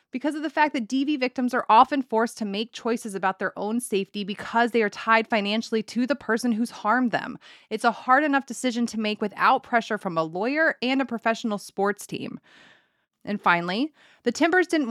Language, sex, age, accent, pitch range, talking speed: English, female, 20-39, American, 195-250 Hz, 200 wpm